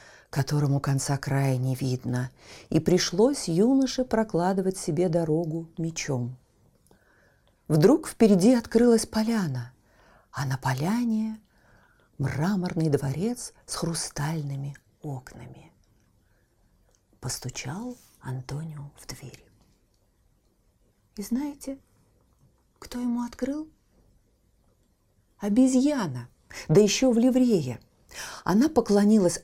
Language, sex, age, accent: Russian, female, 40-59, native